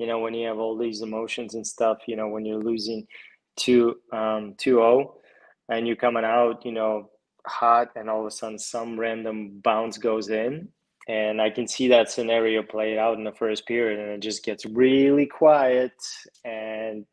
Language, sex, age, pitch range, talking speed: English, male, 20-39, 110-120 Hz, 190 wpm